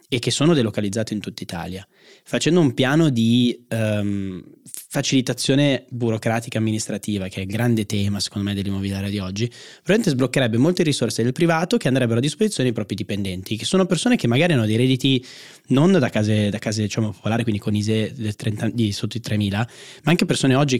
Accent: native